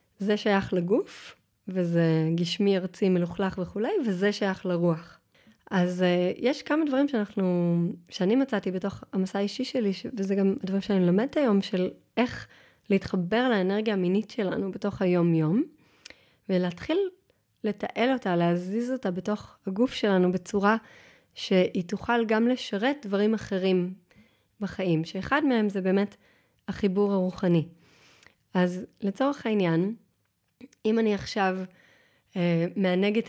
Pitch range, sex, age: 185-225 Hz, female, 30-49